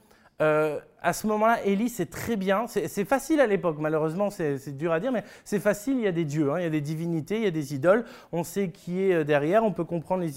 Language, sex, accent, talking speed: French, male, French, 270 wpm